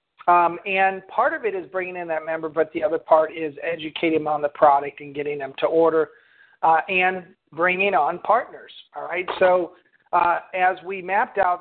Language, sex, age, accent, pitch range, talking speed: English, male, 50-69, American, 165-190 Hz, 195 wpm